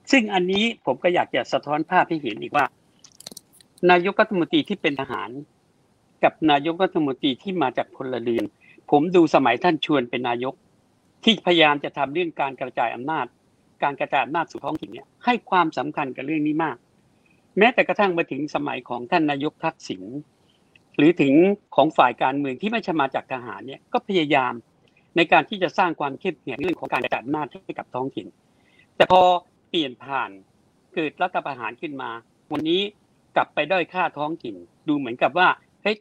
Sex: male